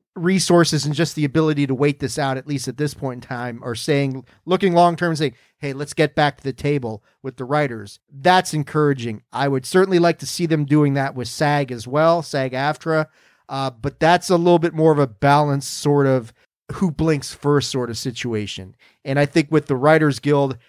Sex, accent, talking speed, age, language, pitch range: male, American, 210 wpm, 40-59, English, 130-155 Hz